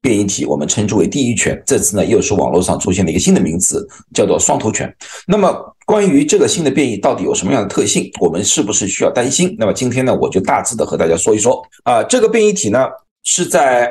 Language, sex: Chinese, male